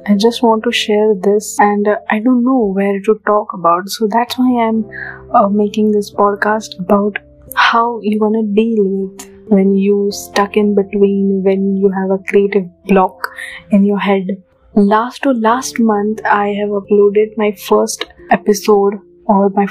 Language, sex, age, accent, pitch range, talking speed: Hindi, female, 20-39, native, 195-220 Hz, 175 wpm